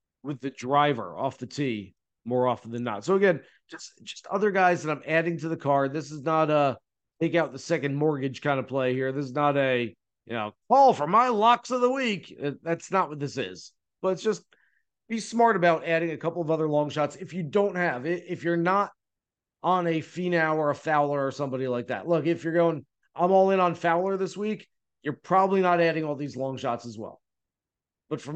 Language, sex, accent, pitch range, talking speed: English, male, American, 140-180 Hz, 225 wpm